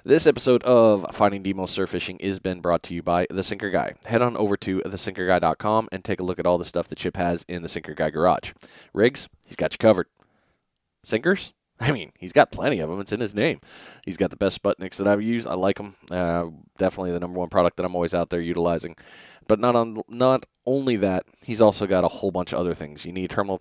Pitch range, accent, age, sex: 90-110 Hz, American, 20-39, male